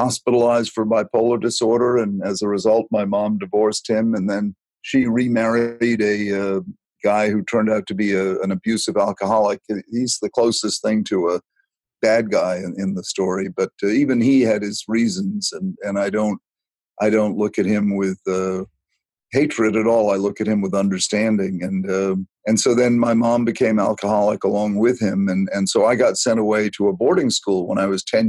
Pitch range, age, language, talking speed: 100-115 Hz, 50-69, English, 200 wpm